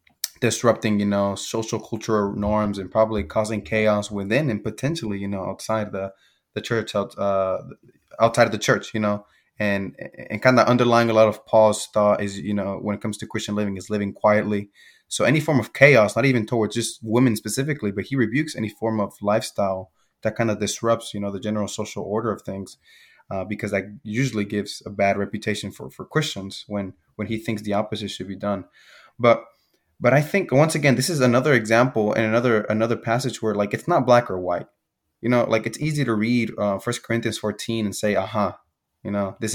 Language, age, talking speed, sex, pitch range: English, 20-39, 210 wpm, male, 100-115 Hz